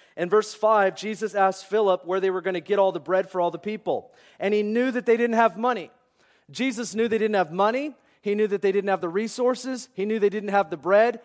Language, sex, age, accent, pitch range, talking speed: English, male, 40-59, American, 205-255 Hz, 255 wpm